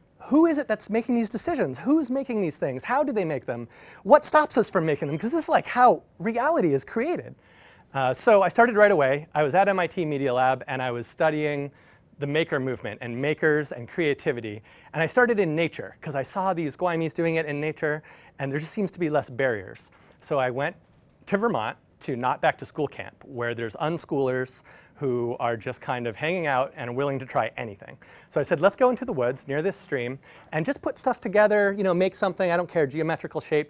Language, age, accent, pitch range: Chinese, 30-49, American, 135-205 Hz